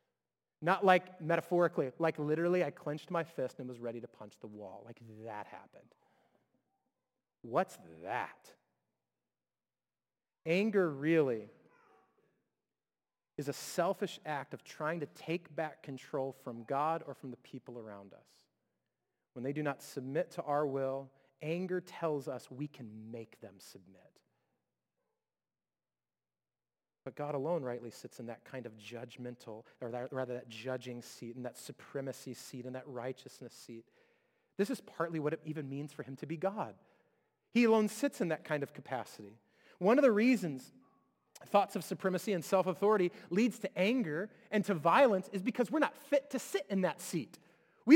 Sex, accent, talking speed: male, American, 160 wpm